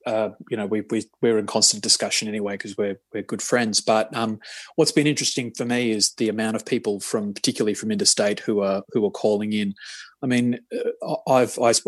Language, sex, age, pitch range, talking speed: English, male, 20-39, 105-130 Hz, 200 wpm